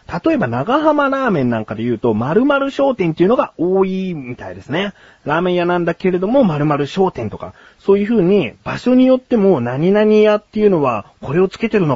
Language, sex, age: Japanese, male, 30-49